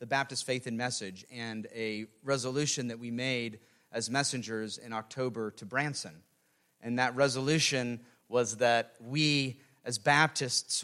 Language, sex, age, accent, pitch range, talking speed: English, male, 40-59, American, 120-155 Hz, 140 wpm